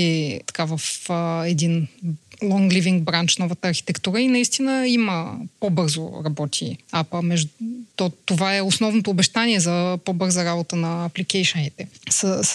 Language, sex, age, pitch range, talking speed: Bulgarian, female, 20-39, 175-225 Hz, 130 wpm